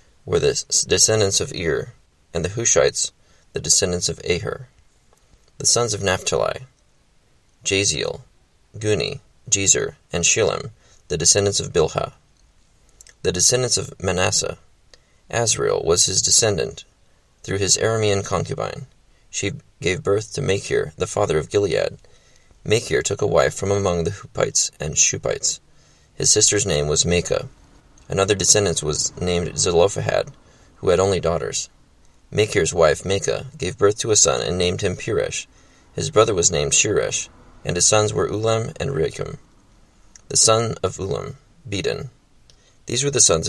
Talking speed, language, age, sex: 140 wpm, English, 30-49, male